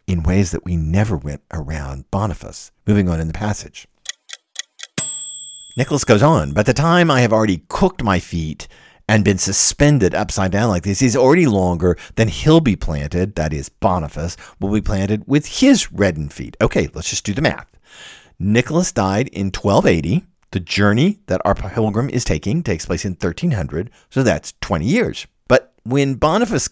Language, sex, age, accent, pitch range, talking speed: English, male, 50-69, American, 90-130 Hz, 175 wpm